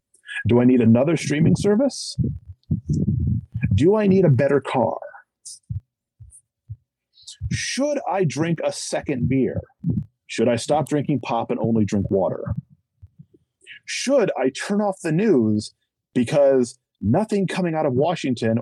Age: 40-59